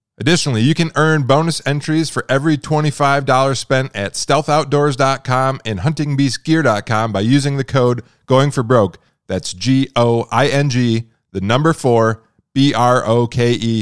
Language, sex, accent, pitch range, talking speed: English, male, American, 115-145 Hz, 115 wpm